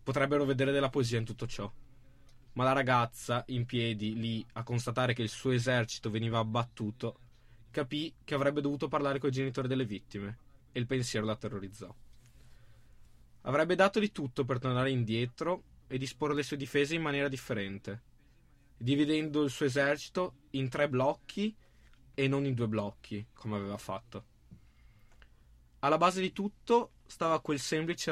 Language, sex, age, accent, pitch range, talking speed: Italian, male, 20-39, native, 110-145 Hz, 155 wpm